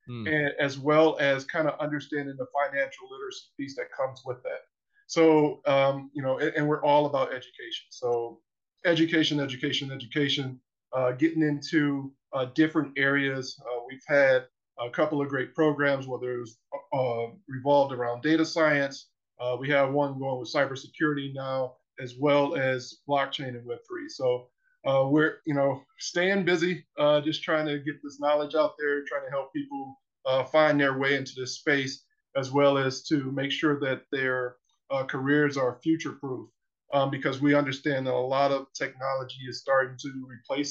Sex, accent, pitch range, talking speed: male, American, 135-155 Hz, 170 wpm